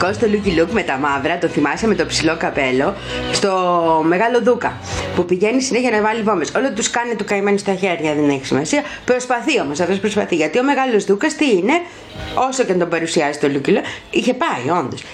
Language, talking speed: Greek, 205 wpm